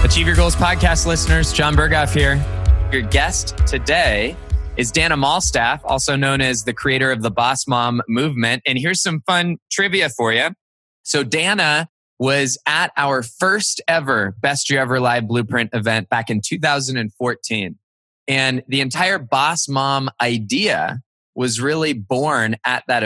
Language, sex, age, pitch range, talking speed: English, male, 20-39, 115-155 Hz, 150 wpm